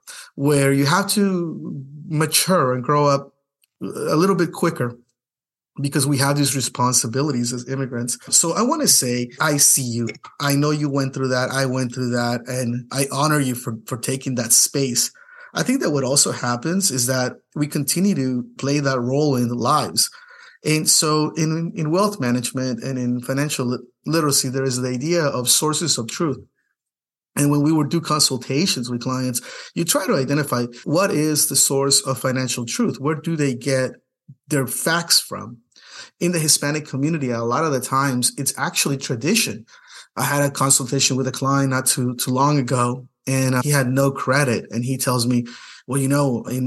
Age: 30-49